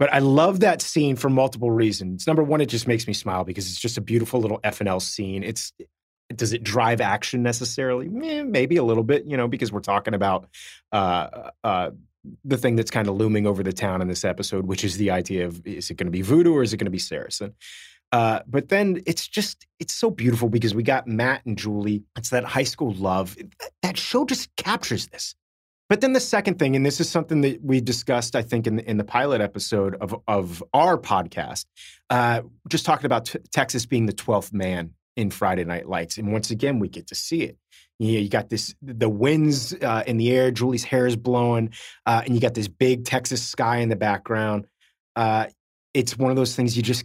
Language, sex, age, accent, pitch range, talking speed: English, male, 30-49, American, 105-130 Hz, 220 wpm